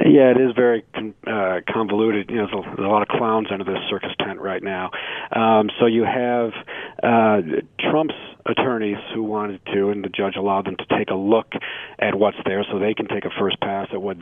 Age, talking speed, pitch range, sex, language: 40-59, 210 wpm, 105-120 Hz, male, English